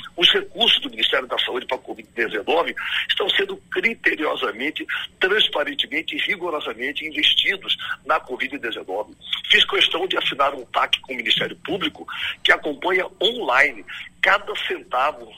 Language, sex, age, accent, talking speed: Portuguese, male, 60-79, Brazilian, 130 wpm